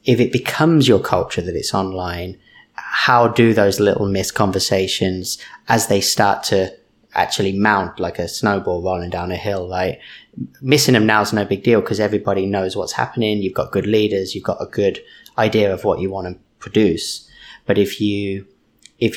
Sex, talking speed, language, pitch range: male, 185 wpm, English, 95-110 Hz